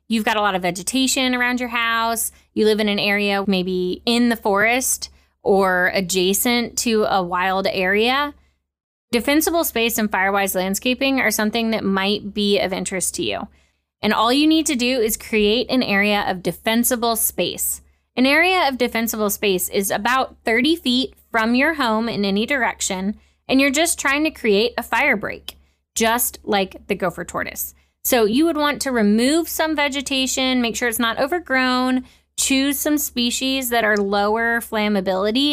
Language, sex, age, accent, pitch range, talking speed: English, female, 20-39, American, 205-255 Hz, 170 wpm